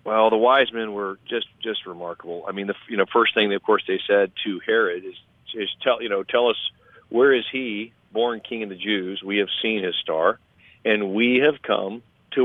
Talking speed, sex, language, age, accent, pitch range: 225 wpm, male, English, 50-69, American, 105-155 Hz